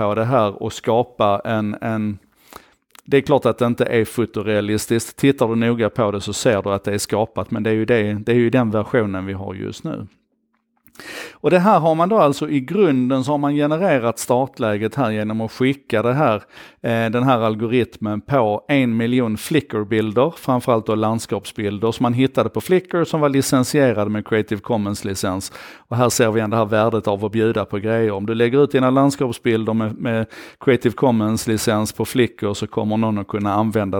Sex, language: male, Swedish